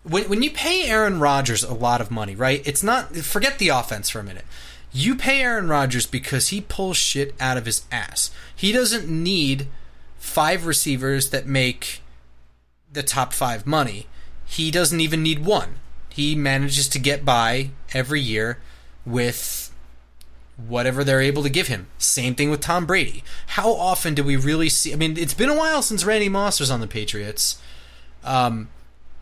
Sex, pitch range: male, 110-160 Hz